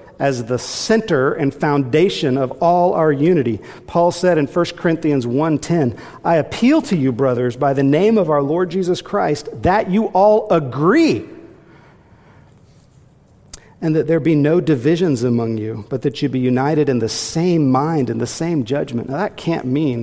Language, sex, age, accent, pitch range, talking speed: English, male, 50-69, American, 120-160 Hz, 170 wpm